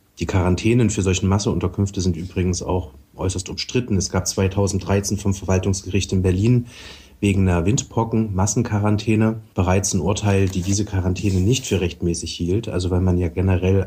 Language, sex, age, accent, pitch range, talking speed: German, male, 30-49, German, 90-105 Hz, 150 wpm